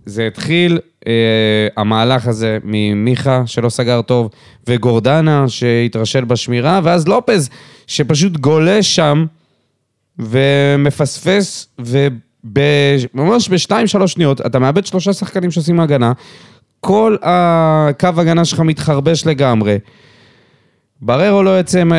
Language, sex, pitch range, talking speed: Hebrew, male, 115-160 Hz, 100 wpm